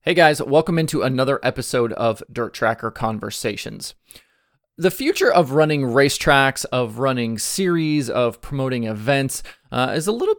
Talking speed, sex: 145 wpm, male